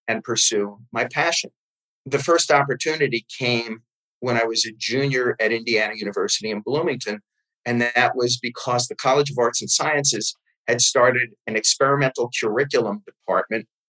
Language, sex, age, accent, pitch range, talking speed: English, male, 40-59, American, 120-165 Hz, 145 wpm